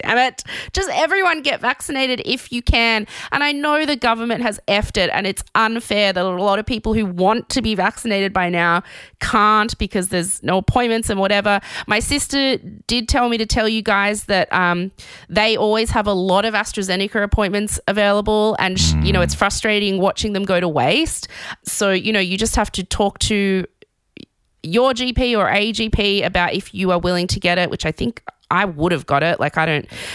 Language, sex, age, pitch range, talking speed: English, female, 20-39, 190-240 Hz, 200 wpm